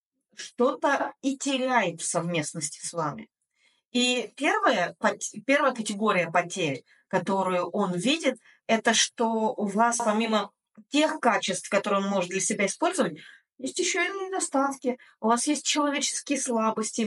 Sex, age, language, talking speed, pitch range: female, 20-39, Russian, 130 wpm, 195-265 Hz